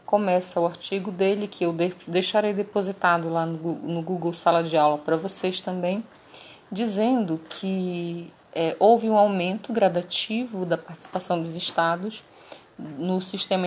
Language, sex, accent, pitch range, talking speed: Portuguese, female, Brazilian, 170-205 Hz, 130 wpm